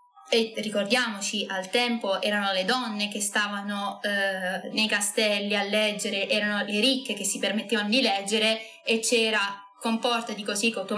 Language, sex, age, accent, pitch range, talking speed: Italian, female, 20-39, native, 205-255 Hz, 160 wpm